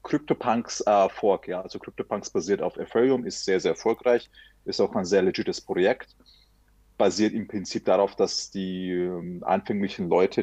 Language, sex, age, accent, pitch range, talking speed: Danish, male, 30-49, German, 95-120 Hz, 150 wpm